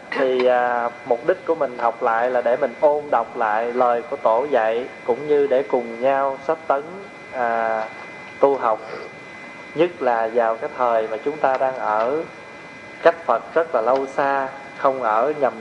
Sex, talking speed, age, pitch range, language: male, 175 wpm, 20-39, 120-155 Hz, Vietnamese